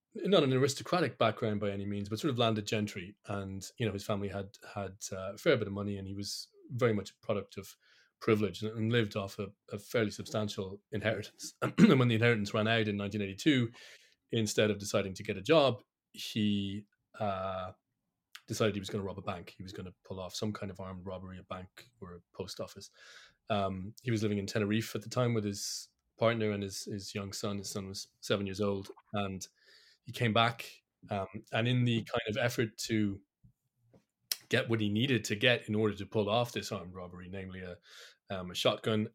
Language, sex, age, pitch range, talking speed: English, male, 20-39, 95-115 Hz, 210 wpm